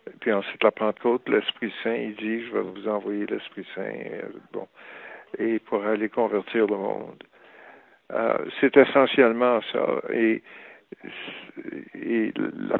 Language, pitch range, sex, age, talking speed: French, 115-130 Hz, male, 60-79, 130 wpm